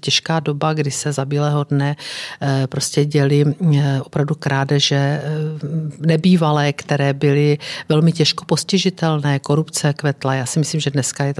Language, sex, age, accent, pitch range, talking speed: Czech, female, 50-69, native, 140-155 Hz, 130 wpm